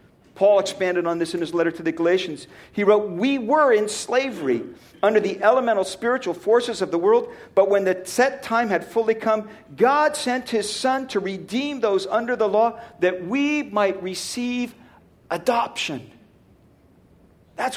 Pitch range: 205-260 Hz